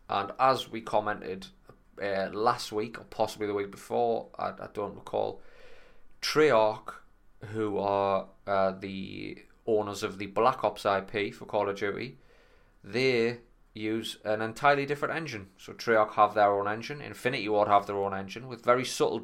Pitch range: 100-115 Hz